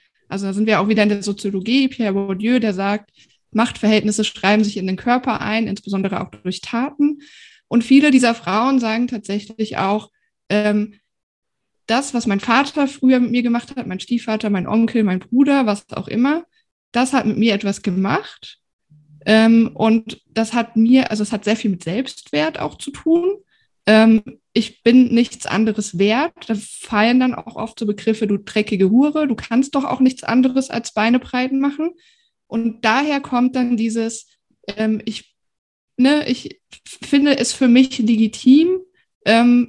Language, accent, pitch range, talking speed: German, German, 210-255 Hz, 170 wpm